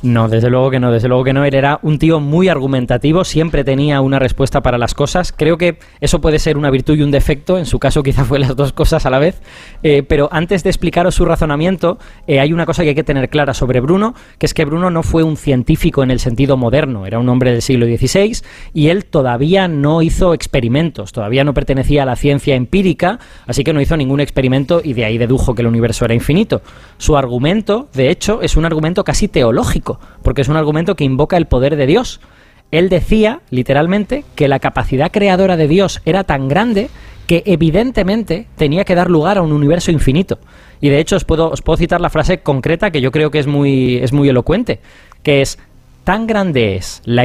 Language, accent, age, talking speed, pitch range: Spanish, Spanish, 20-39, 220 wpm, 135-170 Hz